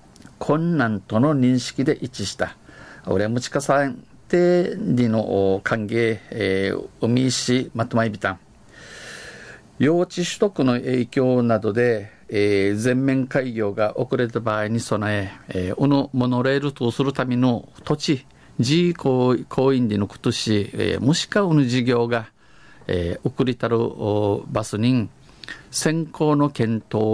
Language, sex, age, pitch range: Japanese, male, 50-69, 105-135 Hz